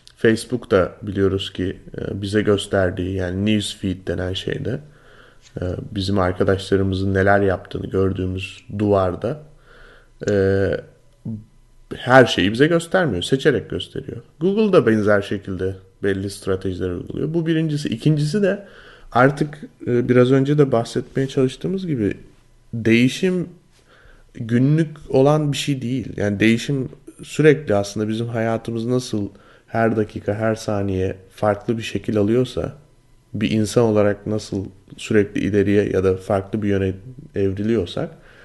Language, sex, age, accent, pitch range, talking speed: Turkish, male, 30-49, native, 100-135 Hz, 110 wpm